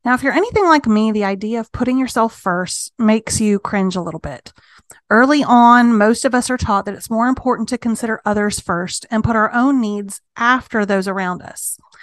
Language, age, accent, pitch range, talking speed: English, 30-49, American, 195-245 Hz, 210 wpm